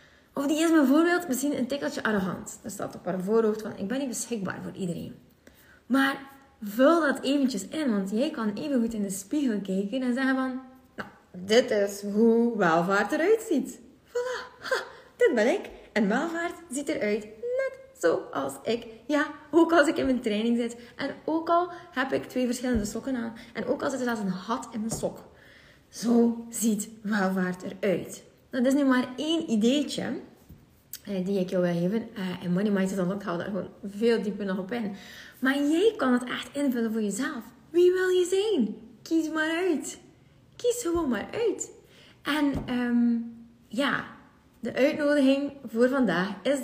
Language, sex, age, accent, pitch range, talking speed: Dutch, female, 20-39, Dutch, 215-290 Hz, 180 wpm